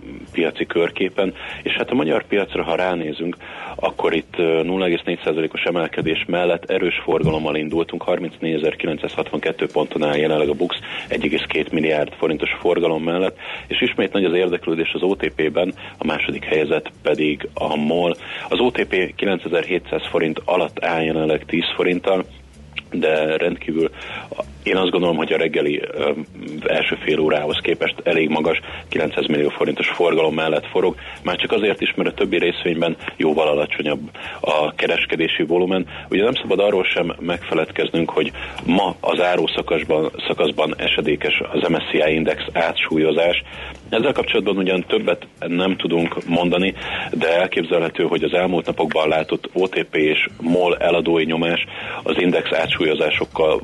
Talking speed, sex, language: 135 wpm, male, Hungarian